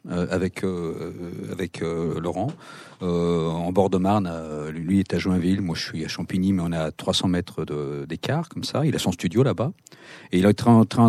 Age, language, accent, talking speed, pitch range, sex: 50-69, French, French, 220 wpm, 90-125 Hz, male